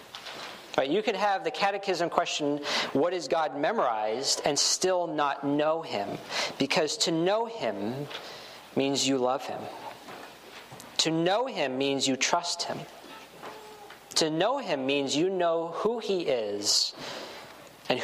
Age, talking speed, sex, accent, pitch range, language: 40-59, 135 wpm, male, American, 135-180 Hz, English